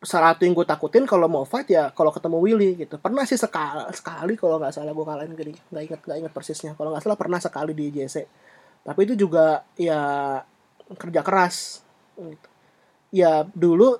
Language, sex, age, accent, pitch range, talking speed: Indonesian, male, 20-39, native, 155-185 Hz, 185 wpm